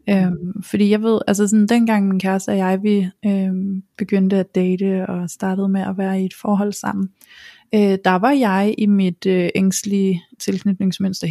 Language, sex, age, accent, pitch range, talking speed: Danish, female, 20-39, native, 190-220 Hz, 180 wpm